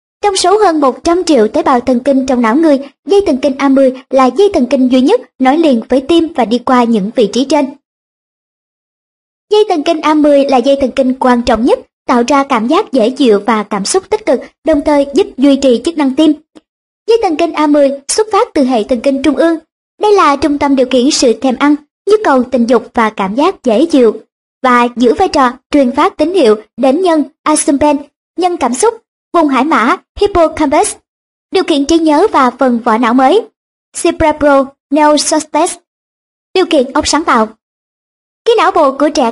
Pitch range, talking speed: 260-330 Hz, 200 wpm